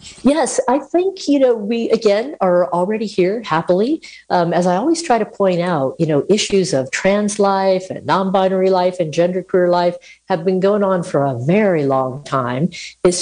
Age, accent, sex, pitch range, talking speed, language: 50-69, American, female, 145-195 Hz, 190 wpm, English